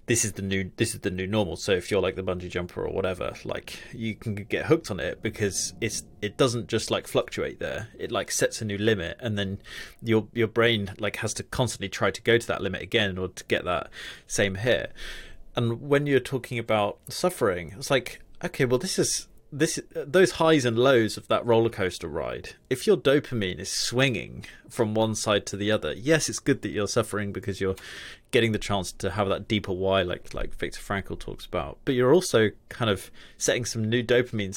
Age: 30-49